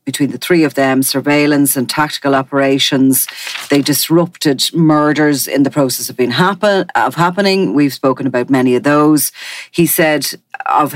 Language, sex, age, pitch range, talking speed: English, female, 40-59, 130-155 Hz, 160 wpm